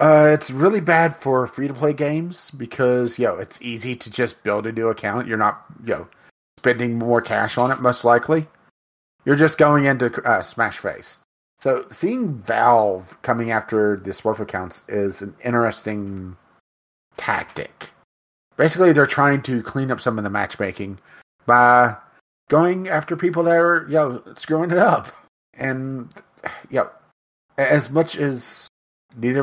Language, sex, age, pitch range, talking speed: English, male, 30-49, 105-130 Hz, 155 wpm